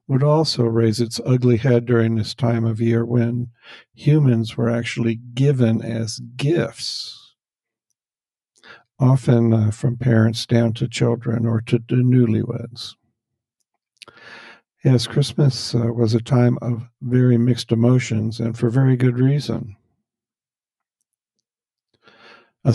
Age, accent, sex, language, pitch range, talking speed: 50-69, American, male, English, 115-120 Hz, 115 wpm